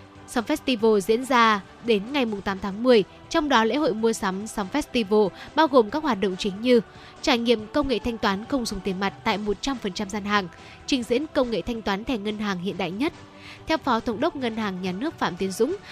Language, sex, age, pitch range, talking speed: Vietnamese, female, 10-29, 205-260 Hz, 230 wpm